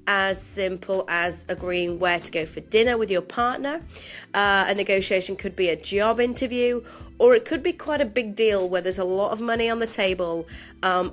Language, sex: English, female